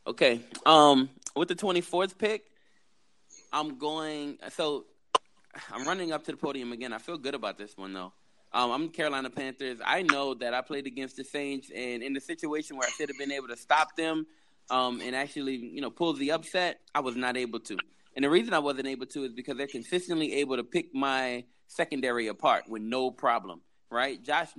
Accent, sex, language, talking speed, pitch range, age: American, male, English, 205 wpm, 130-170 Hz, 20-39